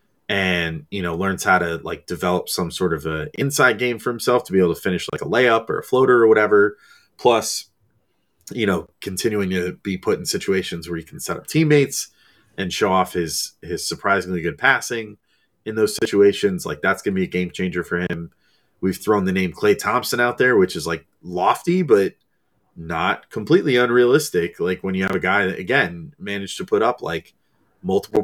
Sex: male